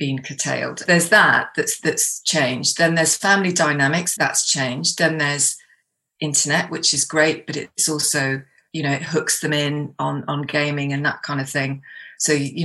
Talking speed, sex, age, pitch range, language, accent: 180 wpm, female, 30-49, 150-170 Hz, English, British